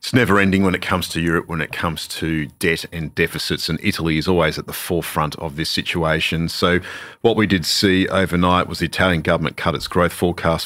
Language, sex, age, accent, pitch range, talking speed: English, male, 40-59, Australian, 80-95 Hz, 215 wpm